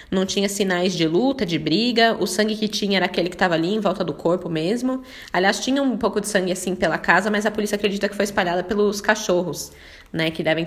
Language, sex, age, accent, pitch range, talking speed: Portuguese, female, 20-39, Brazilian, 170-235 Hz, 235 wpm